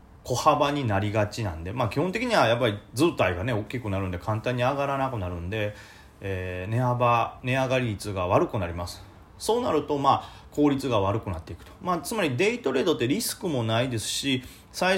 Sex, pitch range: male, 100-150 Hz